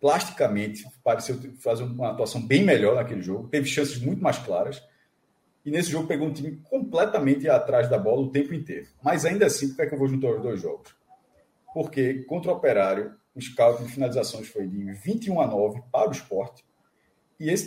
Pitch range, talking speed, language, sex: 135-185 Hz, 195 wpm, Portuguese, male